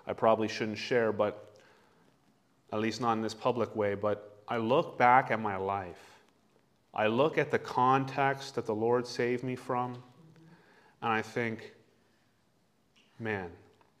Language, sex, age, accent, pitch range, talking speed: English, male, 30-49, American, 120-155 Hz, 145 wpm